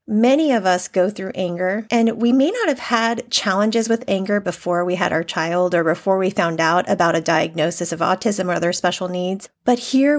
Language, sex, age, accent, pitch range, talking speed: English, female, 30-49, American, 185-240 Hz, 210 wpm